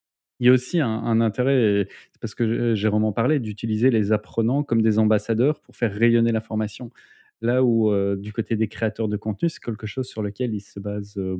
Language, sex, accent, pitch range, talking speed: French, male, French, 110-130 Hz, 215 wpm